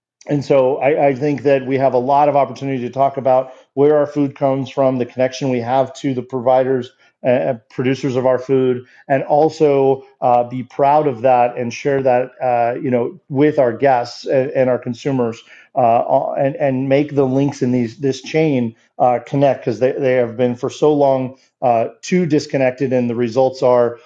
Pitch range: 125-140 Hz